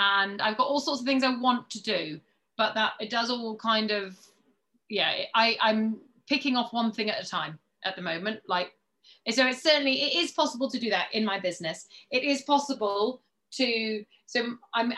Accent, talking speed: British, 200 wpm